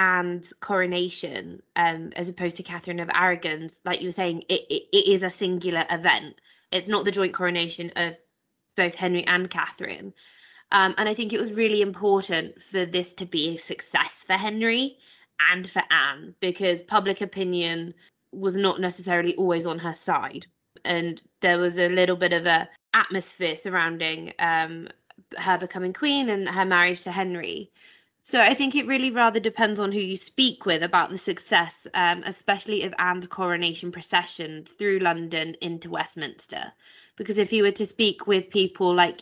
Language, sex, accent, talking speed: English, female, British, 170 wpm